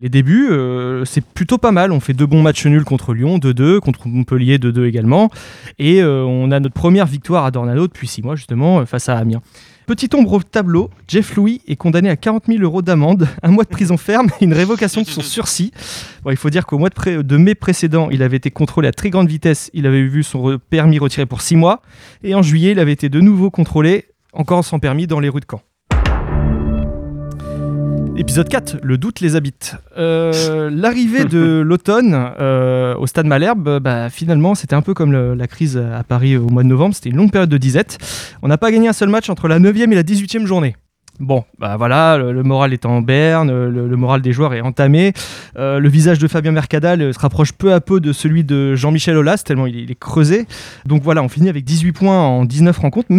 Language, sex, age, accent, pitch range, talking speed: French, male, 20-39, French, 130-180 Hz, 230 wpm